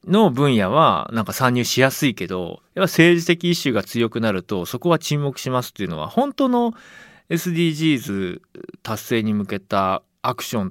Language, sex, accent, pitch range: Japanese, male, native, 100-165 Hz